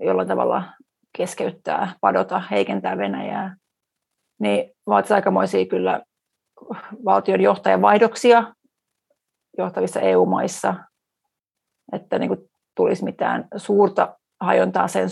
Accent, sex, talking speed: native, female, 85 wpm